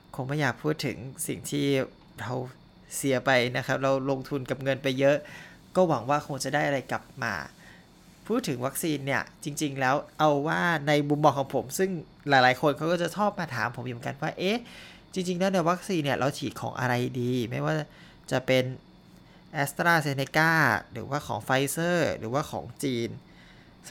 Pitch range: 130-160 Hz